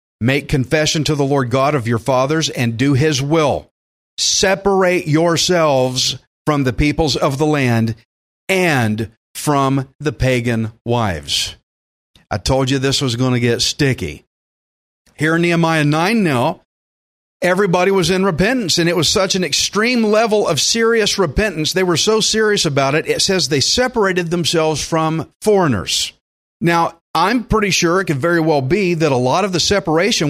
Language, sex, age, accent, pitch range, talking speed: English, male, 40-59, American, 135-180 Hz, 160 wpm